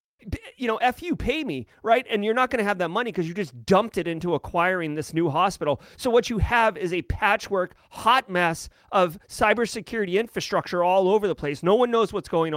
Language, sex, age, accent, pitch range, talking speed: English, male, 30-49, American, 165-220 Hz, 220 wpm